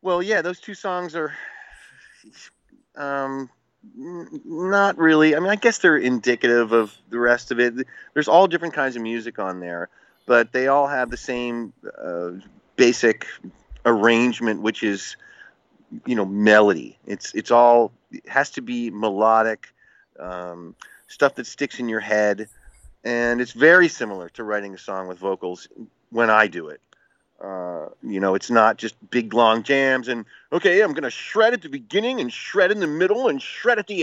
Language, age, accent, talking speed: English, 30-49, American, 175 wpm